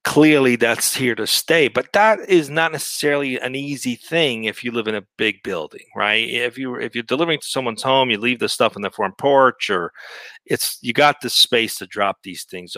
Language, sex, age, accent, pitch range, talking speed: English, male, 40-59, American, 105-135 Hz, 220 wpm